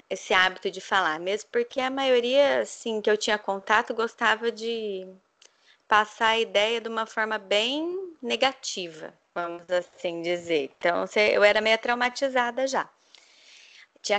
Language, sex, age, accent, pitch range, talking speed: Portuguese, female, 20-39, Brazilian, 190-245 Hz, 140 wpm